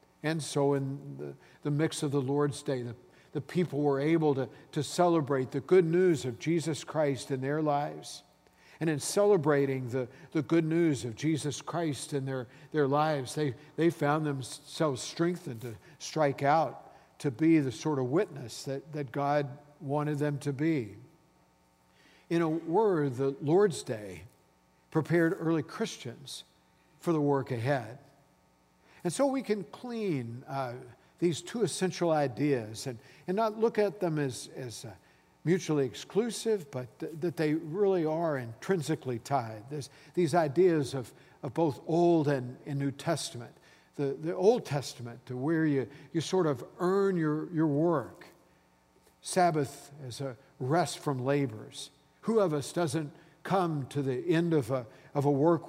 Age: 60-79